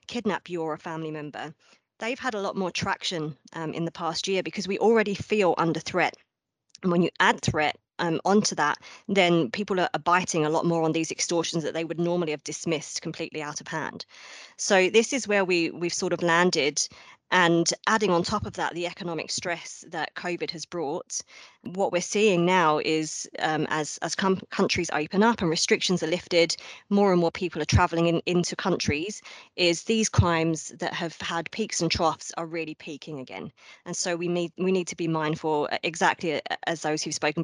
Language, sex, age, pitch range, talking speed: English, female, 20-39, 160-185 Hz, 200 wpm